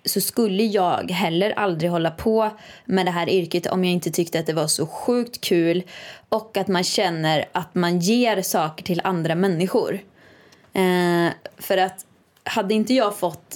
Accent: native